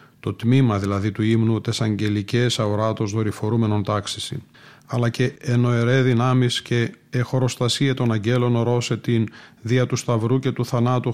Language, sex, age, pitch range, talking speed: Greek, male, 40-59, 110-130 Hz, 140 wpm